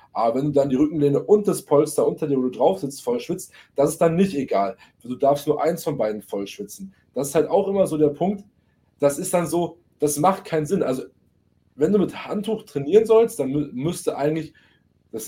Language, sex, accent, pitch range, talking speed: German, male, German, 135-180 Hz, 230 wpm